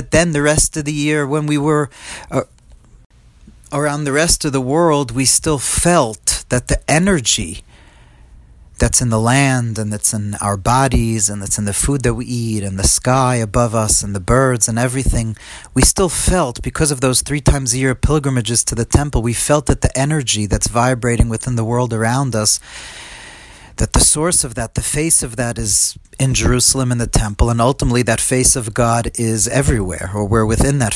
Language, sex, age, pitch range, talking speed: English, male, 40-59, 105-135 Hz, 200 wpm